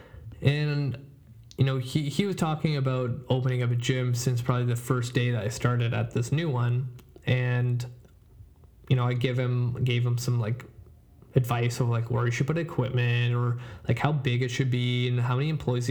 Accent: American